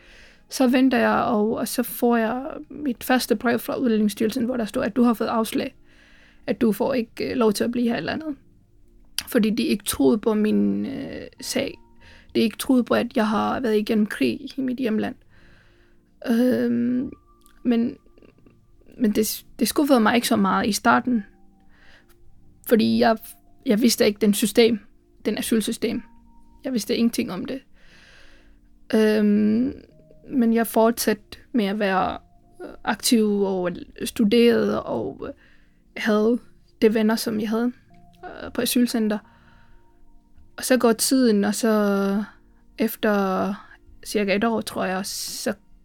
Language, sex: Danish, female